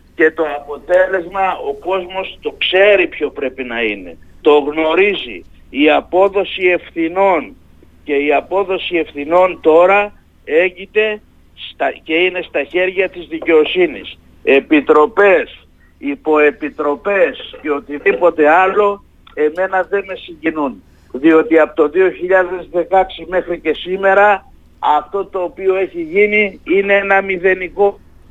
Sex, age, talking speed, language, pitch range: male, 50-69, 110 wpm, Greek, 160-195 Hz